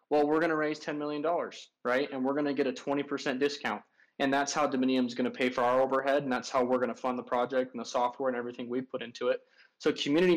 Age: 20-39